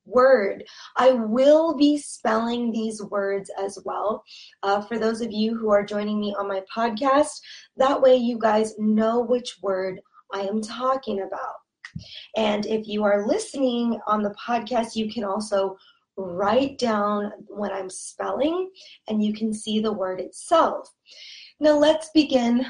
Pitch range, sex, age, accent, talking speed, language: 210-270 Hz, female, 20-39, American, 155 wpm, English